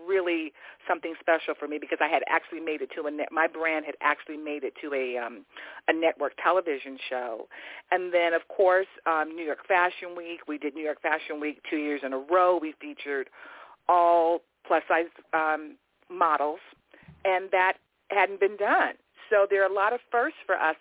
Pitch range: 155-180 Hz